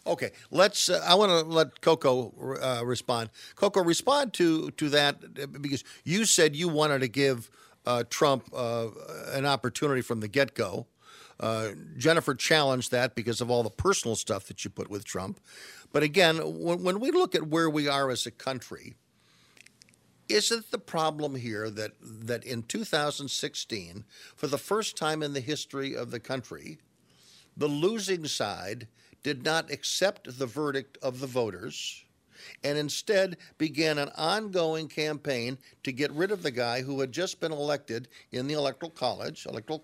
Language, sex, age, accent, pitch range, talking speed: English, male, 50-69, American, 130-175 Hz, 165 wpm